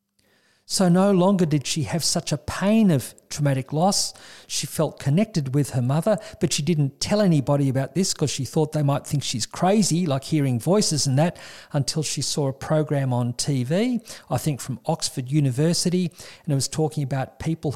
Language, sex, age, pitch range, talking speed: English, male, 50-69, 135-165 Hz, 190 wpm